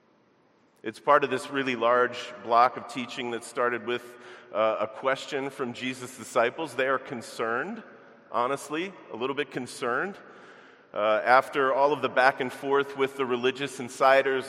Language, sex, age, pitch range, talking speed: English, male, 40-59, 115-140 Hz, 155 wpm